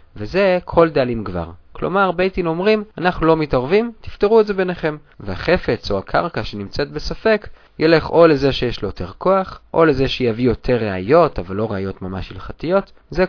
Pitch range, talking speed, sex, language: 110-175 Hz, 165 wpm, male, Hebrew